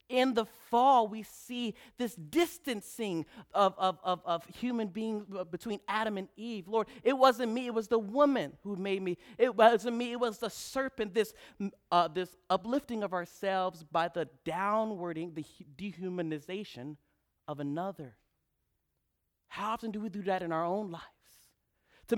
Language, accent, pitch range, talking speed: English, American, 195-245 Hz, 160 wpm